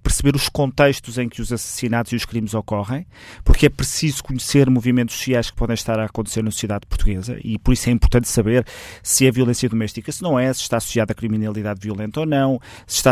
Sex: male